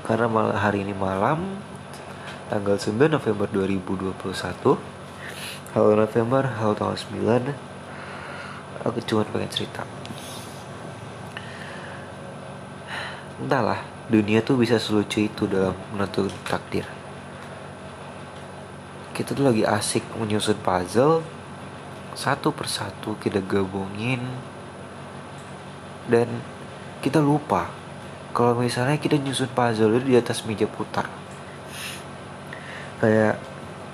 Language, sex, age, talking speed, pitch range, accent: Indonesian, male, 30-49, 90 wpm, 100-125 Hz, native